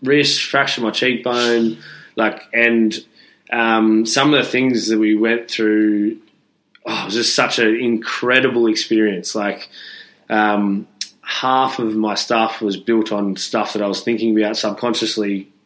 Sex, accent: male, Australian